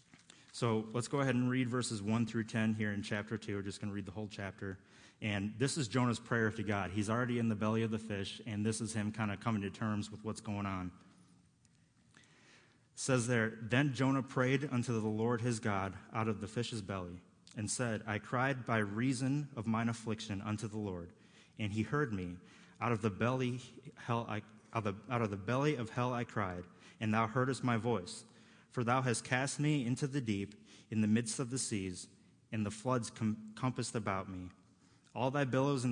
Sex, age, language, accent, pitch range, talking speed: male, 30-49, English, American, 105-125 Hz, 210 wpm